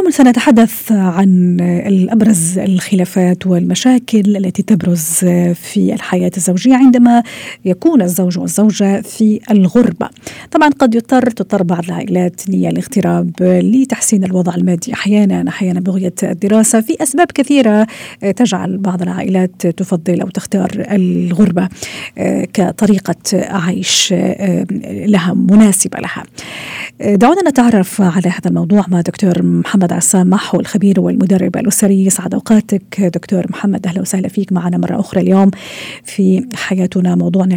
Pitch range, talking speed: 180-210 Hz, 115 wpm